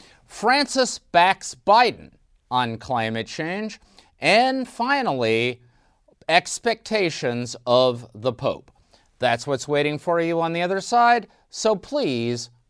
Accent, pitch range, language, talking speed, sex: American, 120-180 Hz, English, 110 wpm, male